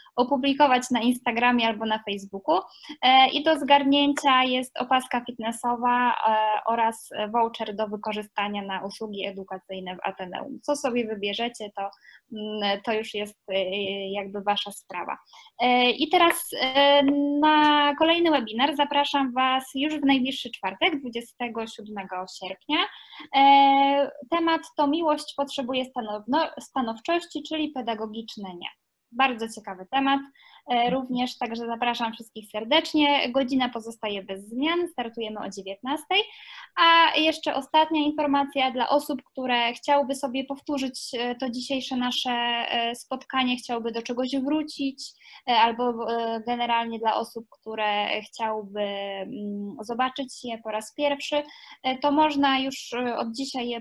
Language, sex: Polish, female